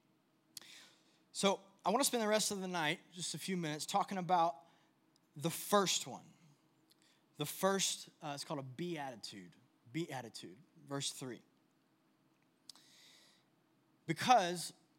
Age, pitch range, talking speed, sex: 20-39, 145-175 Hz, 120 wpm, male